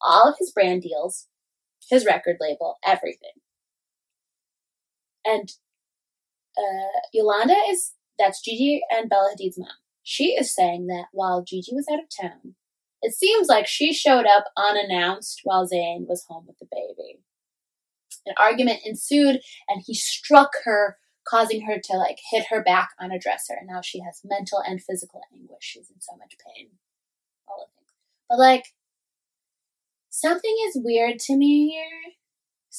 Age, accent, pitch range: 20-39, American, 190-255 Hz